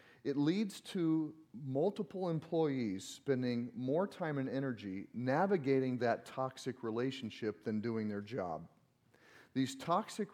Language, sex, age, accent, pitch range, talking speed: English, male, 40-59, American, 115-160 Hz, 115 wpm